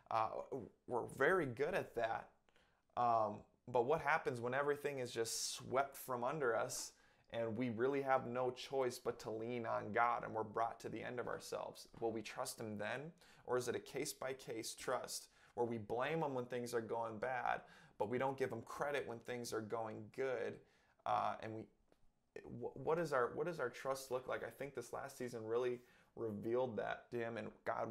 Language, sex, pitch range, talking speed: English, male, 120-135 Hz, 195 wpm